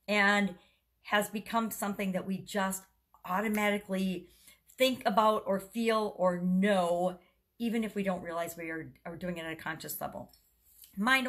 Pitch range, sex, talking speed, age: 180-225 Hz, female, 155 wpm, 50-69